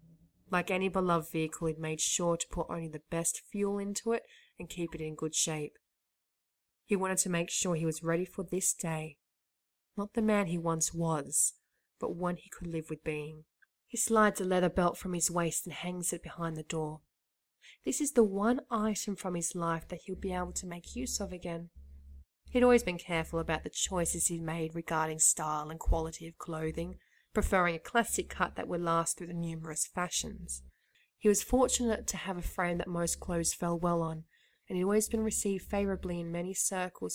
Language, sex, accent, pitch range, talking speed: English, female, Australian, 165-200 Hz, 200 wpm